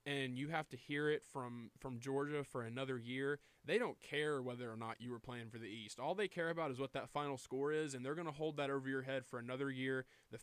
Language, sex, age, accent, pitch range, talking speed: English, male, 20-39, American, 130-155 Hz, 270 wpm